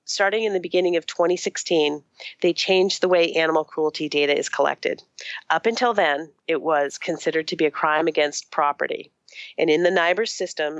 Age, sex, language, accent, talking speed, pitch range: 40-59, female, English, American, 180 wpm, 155-195 Hz